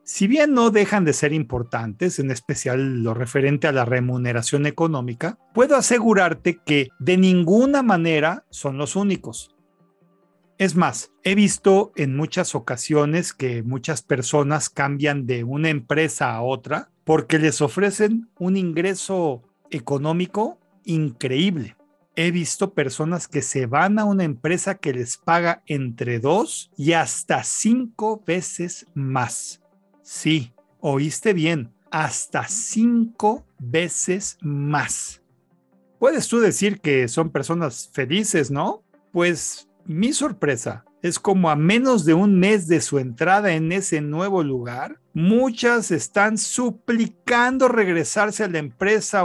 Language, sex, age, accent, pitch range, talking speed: Spanish, male, 40-59, Mexican, 145-205 Hz, 130 wpm